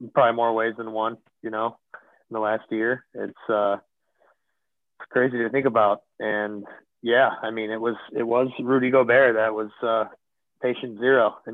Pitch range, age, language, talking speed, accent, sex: 110-135 Hz, 30-49, English, 175 wpm, American, male